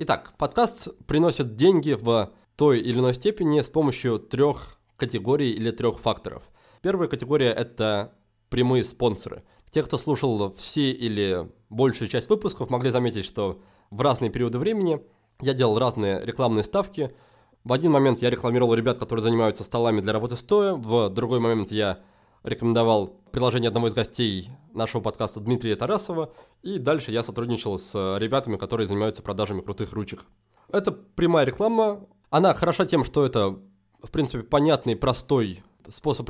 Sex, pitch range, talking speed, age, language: male, 110-150 Hz, 150 wpm, 20-39, Russian